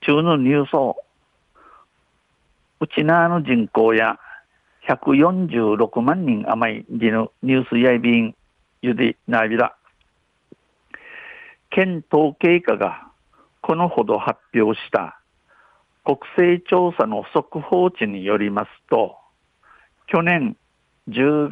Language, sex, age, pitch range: Japanese, male, 60-79, 120-160 Hz